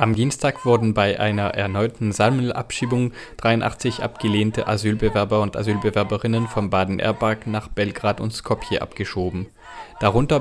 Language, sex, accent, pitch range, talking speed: German, male, German, 110-120 Hz, 115 wpm